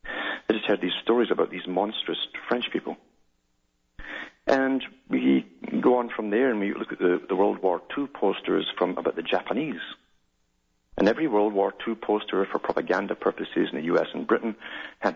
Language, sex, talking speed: English, male, 180 wpm